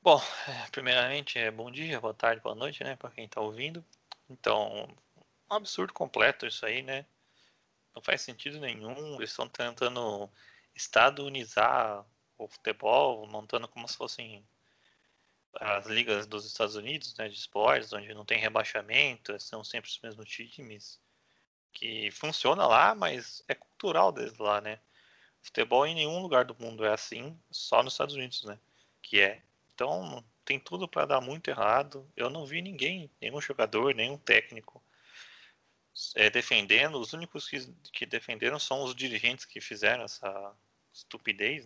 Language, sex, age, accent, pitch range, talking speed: Portuguese, male, 20-39, Brazilian, 105-140 Hz, 150 wpm